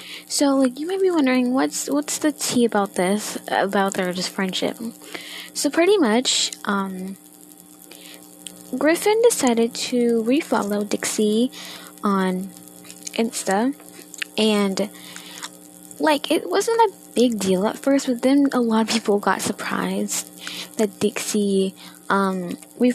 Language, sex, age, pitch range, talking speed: English, female, 10-29, 180-265 Hz, 125 wpm